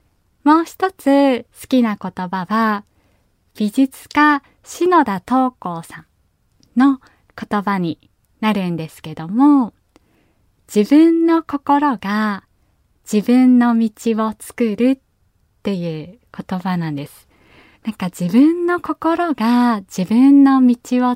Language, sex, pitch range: Japanese, female, 190-255 Hz